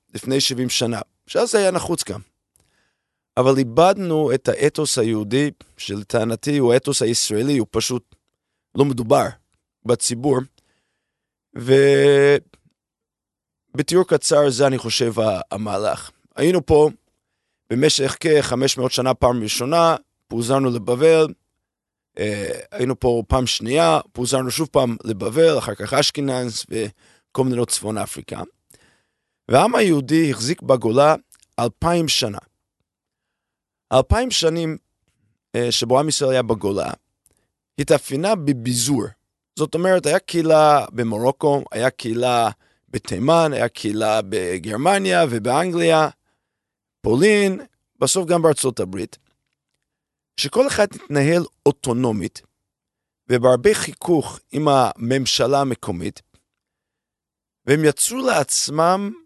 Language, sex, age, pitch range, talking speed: Hebrew, male, 30-49, 120-155 Hz, 80 wpm